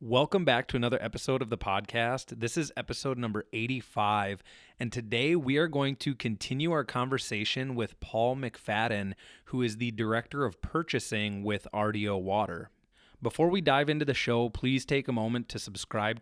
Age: 30-49